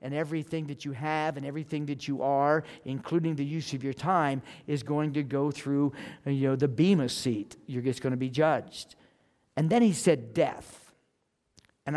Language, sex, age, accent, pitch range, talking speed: English, male, 50-69, American, 135-170 Hz, 190 wpm